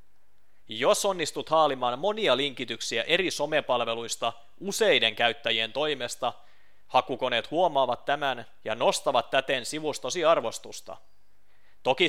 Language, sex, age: Finnish, male, 30-49